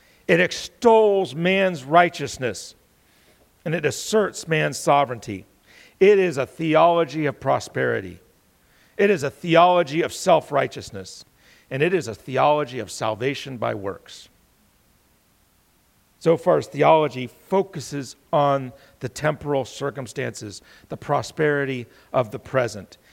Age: 50-69